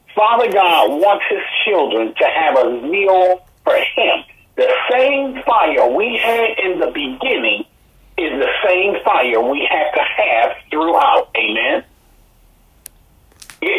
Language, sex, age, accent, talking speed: English, male, 50-69, American, 130 wpm